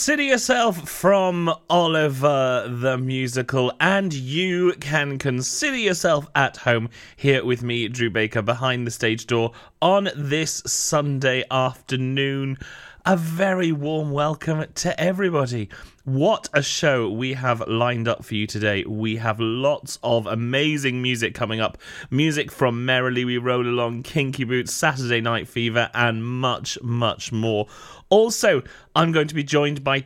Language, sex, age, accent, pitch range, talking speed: English, male, 30-49, British, 110-145 Hz, 145 wpm